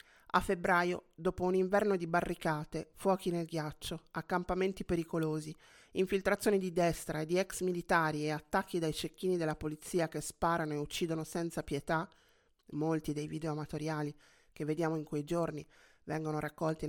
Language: Italian